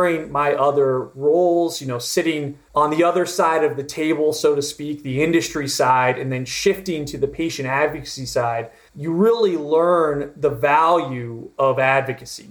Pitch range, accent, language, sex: 135-165 Hz, American, English, male